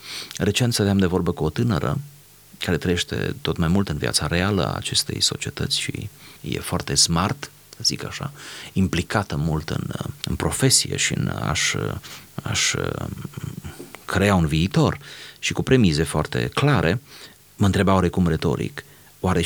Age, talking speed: 30-49, 150 wpm